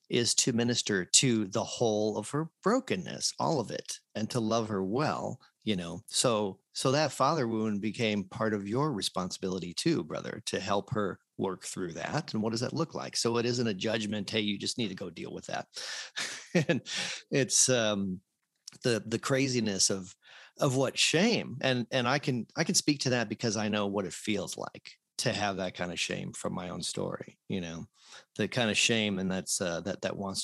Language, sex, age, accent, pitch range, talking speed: English, male, 40-59, American, 100-120 Hz, 205 wpm